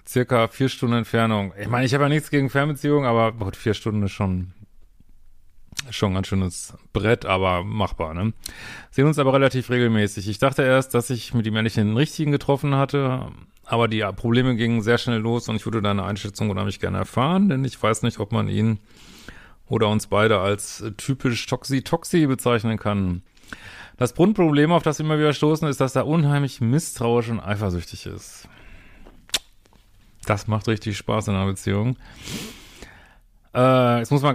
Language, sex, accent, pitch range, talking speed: German, male, German, 105-130 Hz, 175 wpm